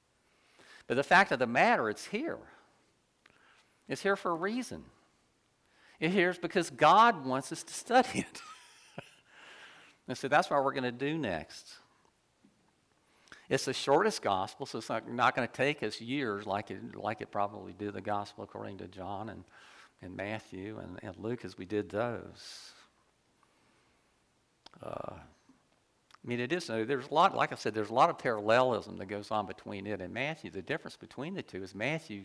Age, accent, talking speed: 50-69, American, 175 wpm